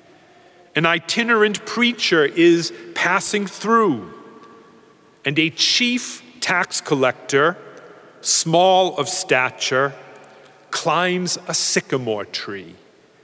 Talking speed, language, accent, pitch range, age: 80 wpm, English, American, 140-205 Hz, 50-69